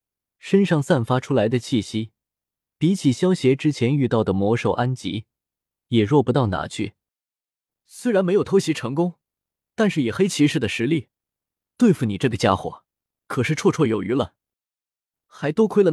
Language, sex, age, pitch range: Chinese, male, 20-39, 115-165 Hz